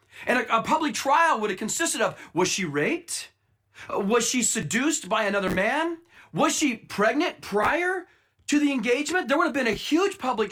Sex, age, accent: male, 40-59, American